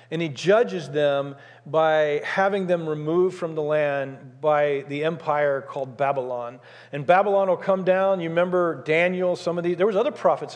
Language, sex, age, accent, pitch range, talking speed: English, male, 40-59, American, 155-200 Hz, 175 wpm